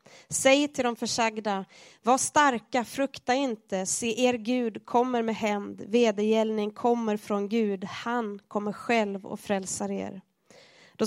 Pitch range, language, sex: 205-235 Hz, Swedish, female